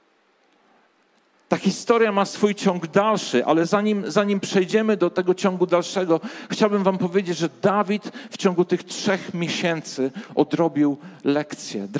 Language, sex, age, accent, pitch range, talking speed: Polish, male, 50-69, native, 165-205 Hz, 130 wpm